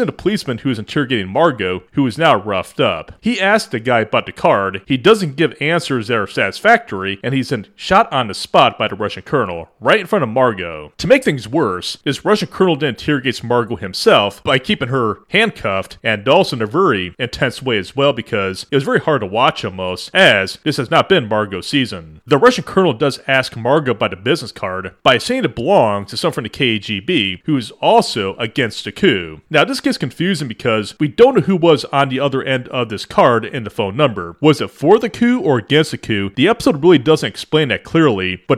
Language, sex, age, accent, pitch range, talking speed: English, male, 30-49, American, 110-165 Hz, 220 wpm